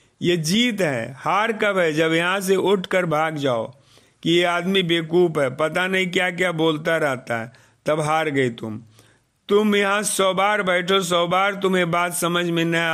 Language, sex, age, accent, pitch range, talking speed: Hindi, male, 50-69, native, 140-195 Hz, 185 wpm